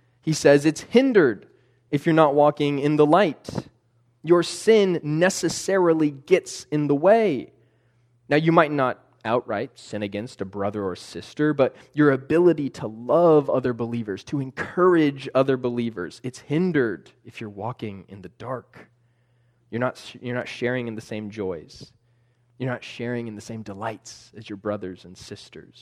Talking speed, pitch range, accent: 160 wpm, 115-145 Hz, American